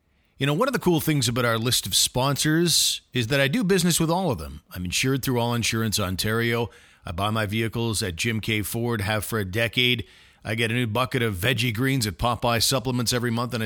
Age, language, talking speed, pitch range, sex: 50-69, English, 235 wpm, 100-125 Hz, male